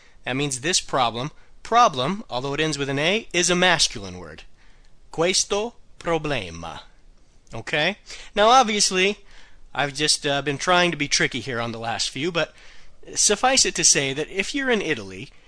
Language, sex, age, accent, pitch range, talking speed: Italian, male, 40-59, American, 120-170 Hz, 165 wpm